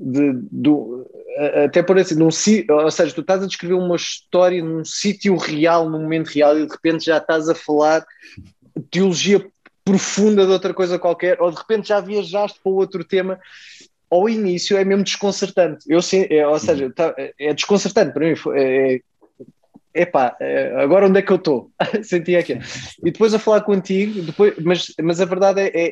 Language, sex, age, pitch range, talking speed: Portuguese, male, 20-39, 150-190 Hz, 190 wpm